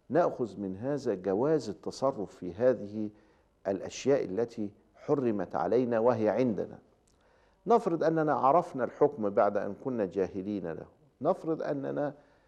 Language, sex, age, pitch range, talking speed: Arabic, male, 50-69, 115-170 Hz, 115 wpm